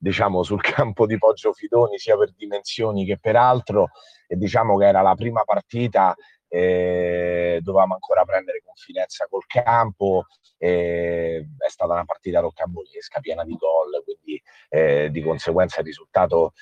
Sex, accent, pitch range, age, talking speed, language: male, native, 95-155 Hz, 30-49, 150 wpm, Italian